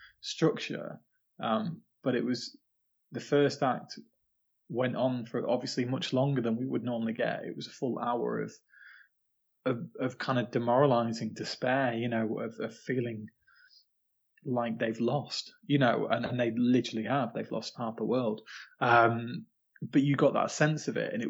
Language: English